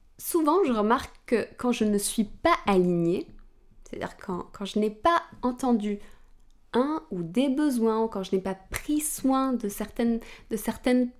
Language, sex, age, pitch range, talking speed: French, female, 20-39, 205-270 Hz, 160 wpm